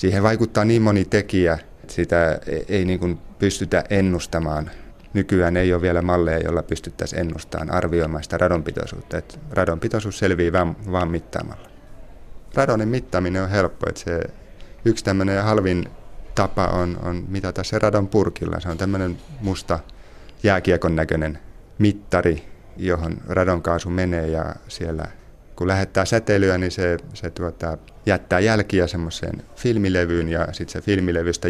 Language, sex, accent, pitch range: Finnish, male, native, 85-95 Hz